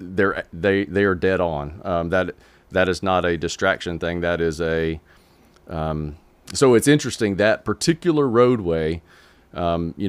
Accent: American